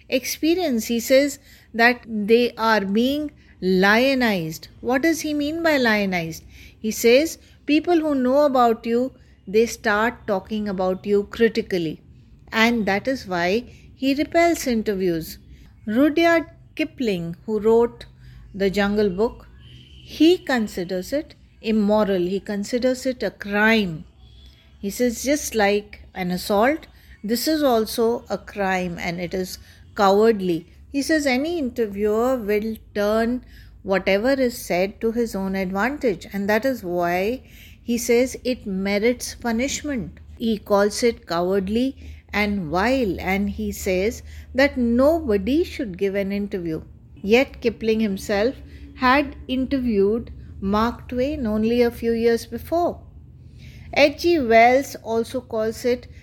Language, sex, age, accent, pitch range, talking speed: English, female, 50-69, Indian, 200-255 Hz, 125 wpm